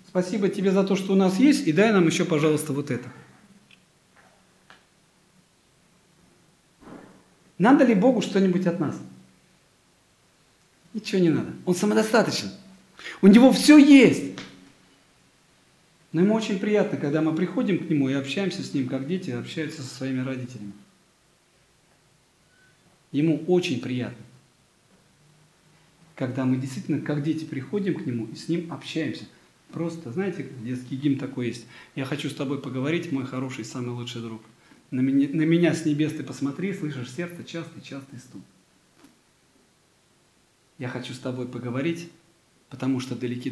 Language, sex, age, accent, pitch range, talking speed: Russian, male, 40-59, native, 130-185 Hz, 140 wpm